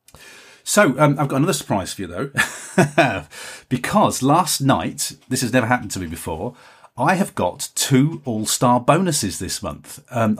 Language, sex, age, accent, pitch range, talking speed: English, male, 40-59, British, 110-140 Hz, 160 wpm